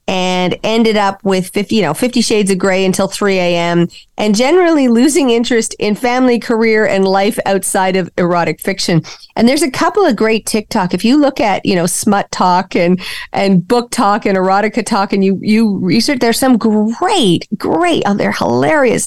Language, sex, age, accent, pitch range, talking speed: English, female, 40-59, American, 200-255 Hz, 185 wpm